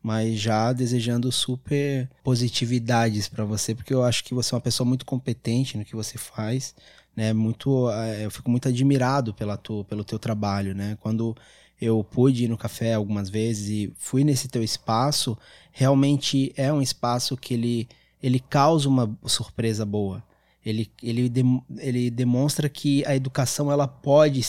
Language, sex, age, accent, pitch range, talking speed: Portuguese, male, 20-39, Brazilian, 115-130 Hz, 165 wpm